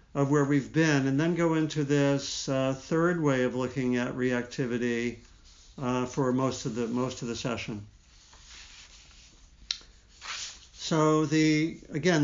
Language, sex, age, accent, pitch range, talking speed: English, male, 50-69, American, 120-145 Hz, 135 wpm